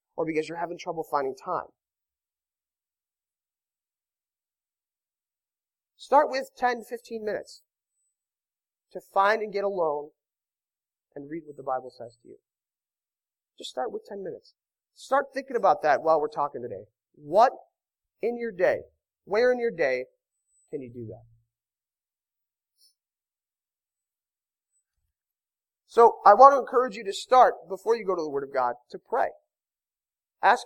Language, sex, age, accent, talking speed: English, male, 30-49, American, 135 wpm